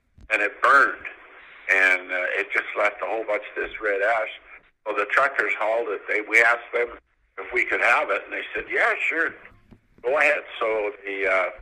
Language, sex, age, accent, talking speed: English, male, 50-69, American, 195 wpm